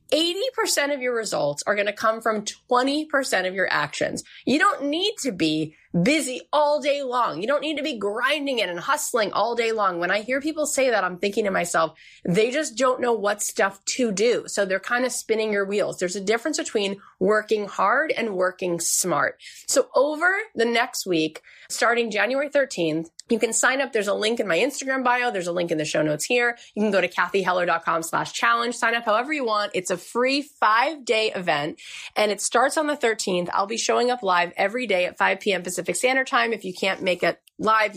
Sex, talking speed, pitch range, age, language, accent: female, 215 wpm, 185-265 Hz, 30-49, English, American